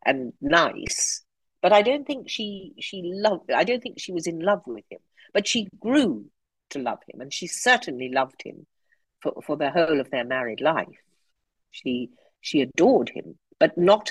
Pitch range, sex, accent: 135-210 Hz, female, British